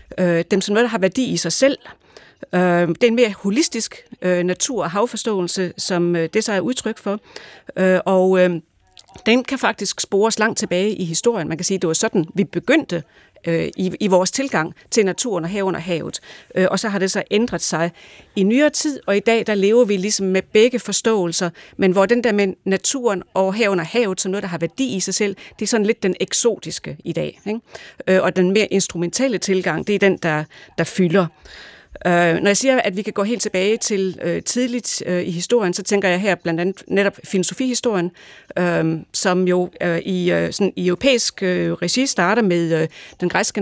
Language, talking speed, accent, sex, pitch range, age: Danish, 200 wpm, native, female, 175-220 Hz, 40-59